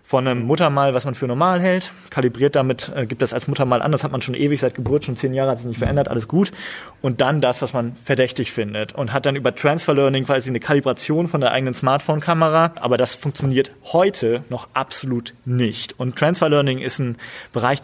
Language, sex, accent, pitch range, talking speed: German, male, German, 130-155 Hz, 220 wpm